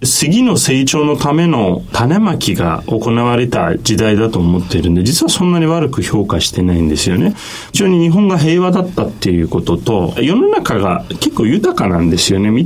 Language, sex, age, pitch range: Japanese, male, 30-49, 95-150 Hz